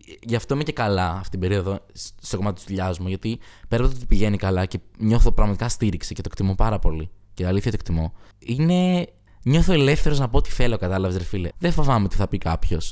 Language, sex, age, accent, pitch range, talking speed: Greek, male, 20-39, native, 95-130 Hz, 230 wpm